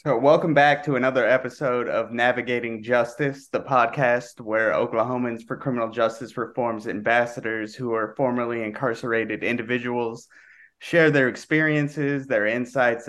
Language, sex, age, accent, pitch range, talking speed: English, male, 20-39, American, 115-135 Hz, 130 wpm